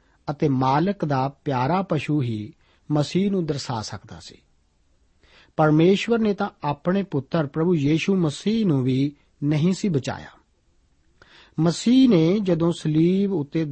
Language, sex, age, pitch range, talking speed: Punjabi, male, 40-59, 130-185 Hz, 125 wpm